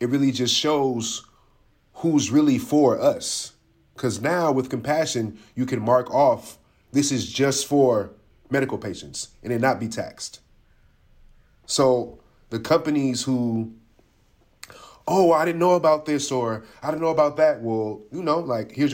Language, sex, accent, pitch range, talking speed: English, male, American, 105-135 Hz, 155 wpm